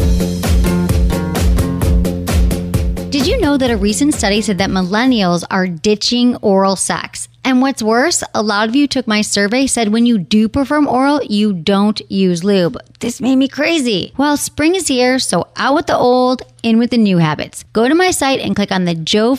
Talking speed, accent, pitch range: 190 wpm, American, 180-270 Hz